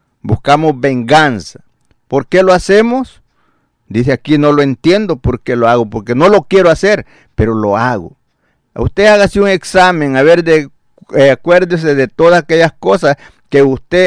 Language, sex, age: Spanish, male, 50-69